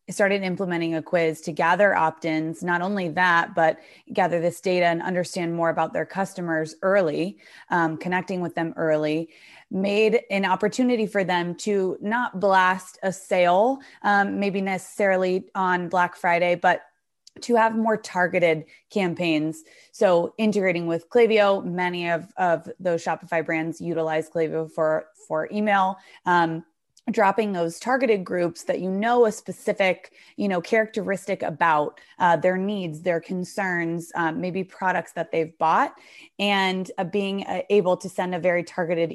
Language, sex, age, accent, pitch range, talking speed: English, female, 20-39, American, 165-195 Hz, 150 wpm